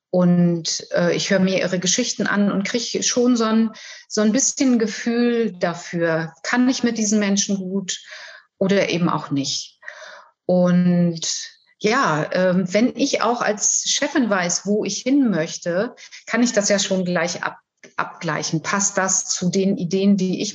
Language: German